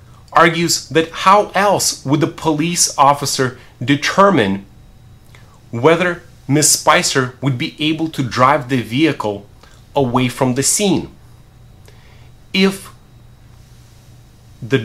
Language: English